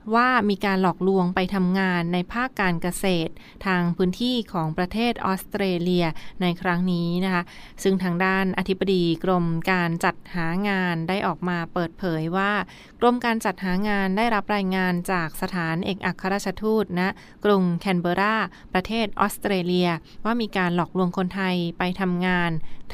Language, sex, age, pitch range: Thai, female, 20-39, 175-205 Hz